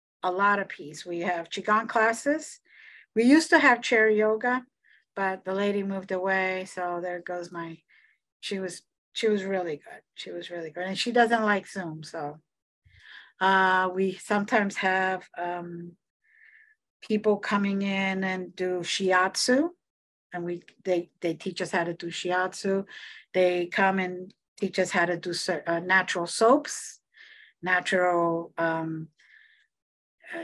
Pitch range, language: 175-210 Hz, English